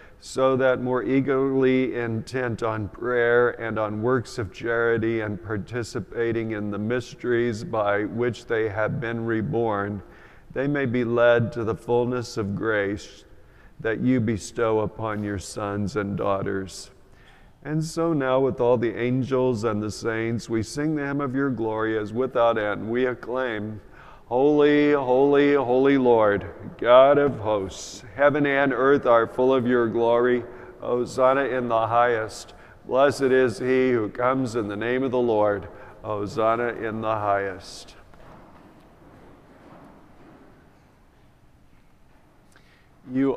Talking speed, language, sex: 135 wpm, English, male